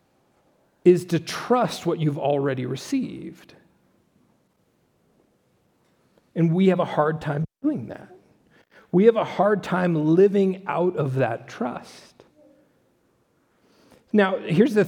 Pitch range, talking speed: 145-190 Hz, 115 wpm